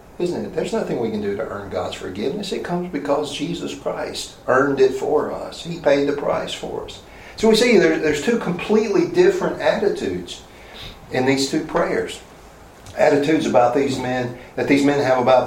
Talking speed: 180 wpm